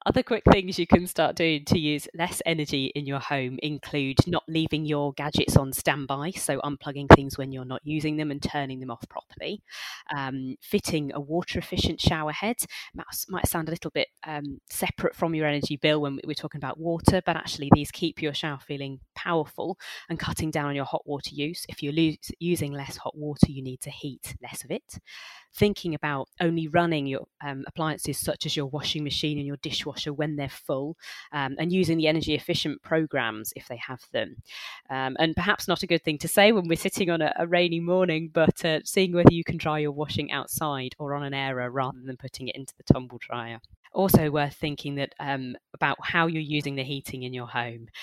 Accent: British